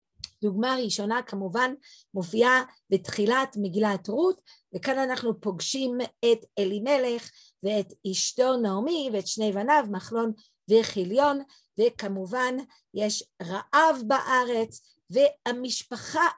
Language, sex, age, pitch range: Hebrew, female, 50-69, 225-295 Hz